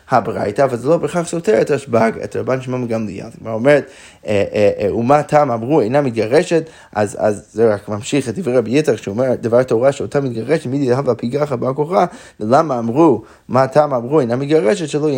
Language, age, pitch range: Hebrew, 20-39, 115-150 Hz